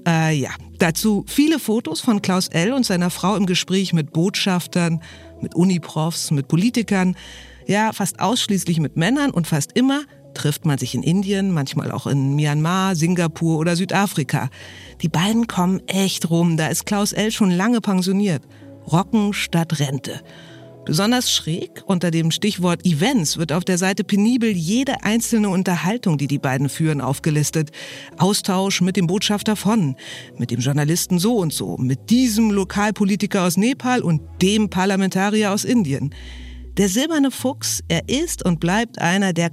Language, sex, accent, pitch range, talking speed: German, female, German, 150-205 Hz, 155 wpm